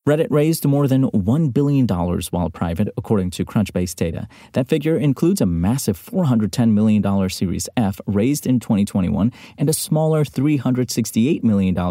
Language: English